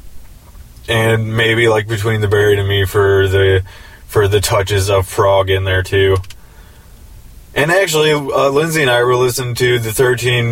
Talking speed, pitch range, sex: 165 wpm, 100-135 Hz, male